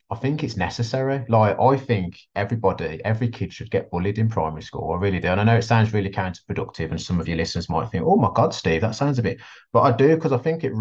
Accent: British